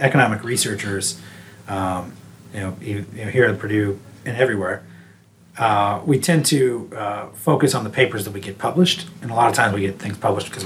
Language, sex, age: English, male, 30-49